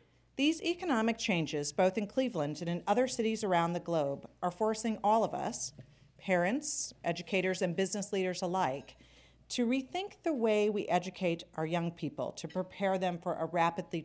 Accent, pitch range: American, 155-205 Hz